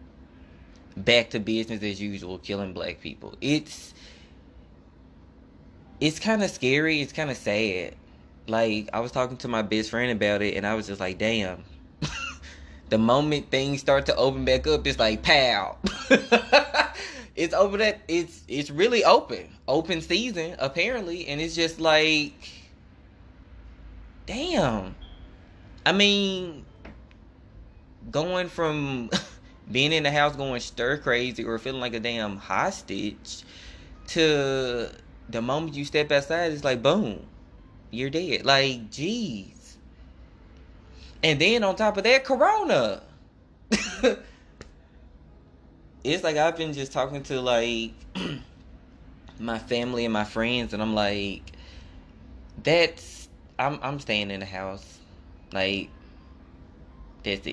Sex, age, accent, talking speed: male, 20-39, American, 125 wpm